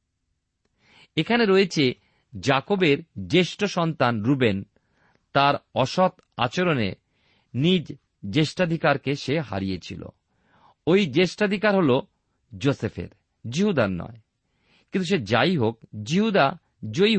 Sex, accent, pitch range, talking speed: male, native, 110-170 Hz, 85 wpm